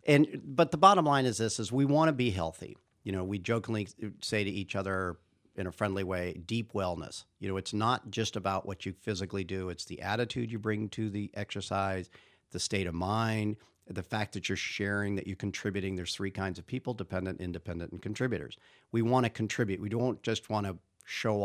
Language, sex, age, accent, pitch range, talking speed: English, male, 50-69, American, 95-115 Hz, 215 wpm